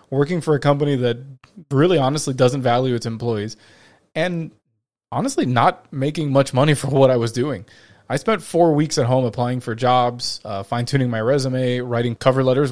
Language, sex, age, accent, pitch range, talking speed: English, male, 20-39, American, 110-140 Hz, 180 wpm